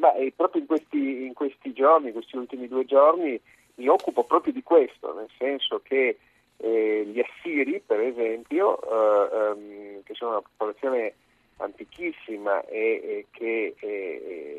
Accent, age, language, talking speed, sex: native, 50-69, Italian, 155 wpm, male